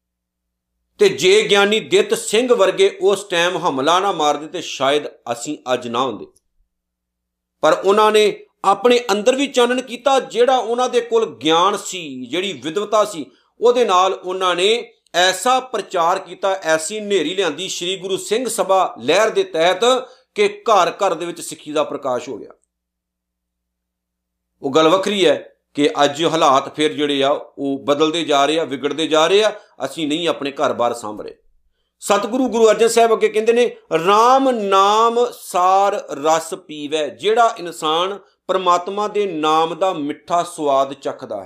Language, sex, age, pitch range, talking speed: Punjabi, male, 50-69, 140-215 Hz, 155 wpm